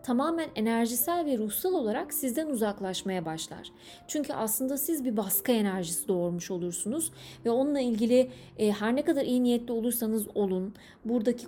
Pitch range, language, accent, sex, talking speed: 205-270 Hz, Turkish, native, female, 140 wpm